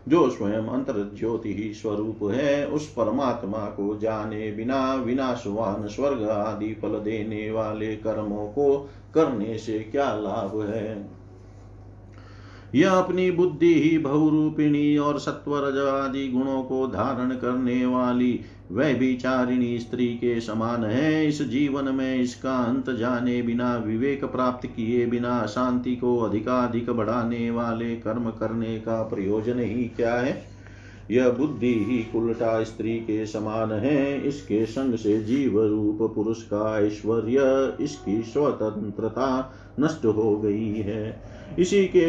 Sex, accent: male, native